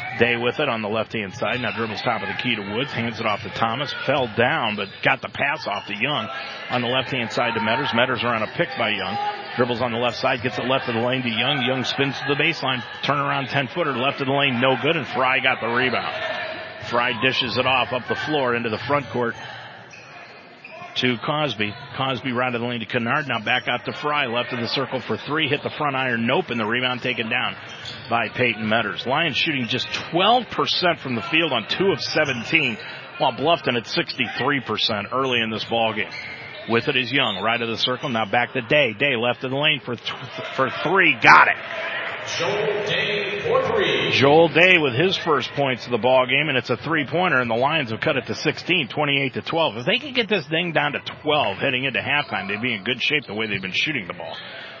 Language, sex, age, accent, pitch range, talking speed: English, male, 40-59, American, 120-145 Hz, 235 wpm